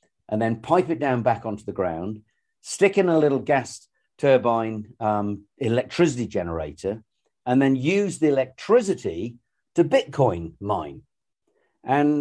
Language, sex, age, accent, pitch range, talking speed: English, male, 50-69, British, 110-140 Hz, 135 wpm